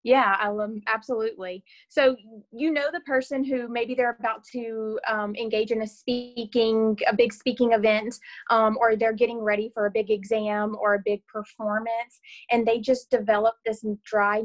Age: 30-49